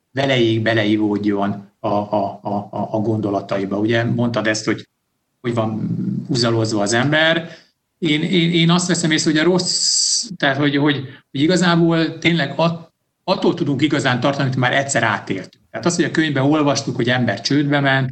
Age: 60-79